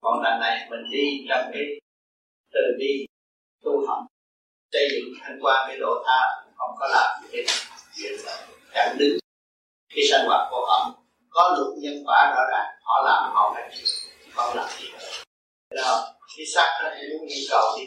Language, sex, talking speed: Vietnamese, male, 180 wpm